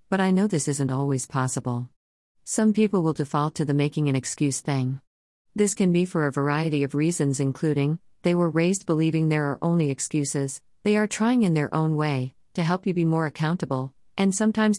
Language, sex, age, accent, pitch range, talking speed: English, female, 40-59, American, 135-170 Hz, 200 wpm